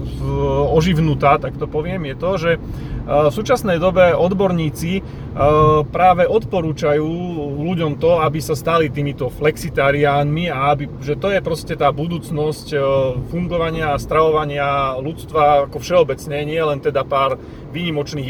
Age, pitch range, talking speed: 30-49, 135-160 Hz, 130 wpm